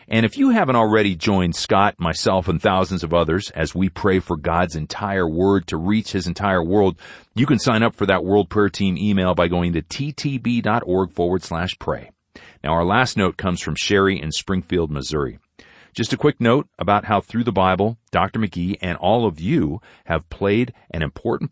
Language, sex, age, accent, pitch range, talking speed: English, male, 40-59, American, 85-105 Hz, 195 wpm